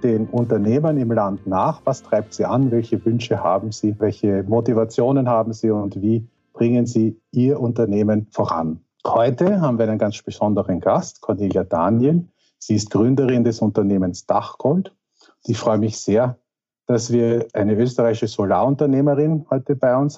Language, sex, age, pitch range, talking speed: German, male, 50-69, 110-135 Hz, 150 wpm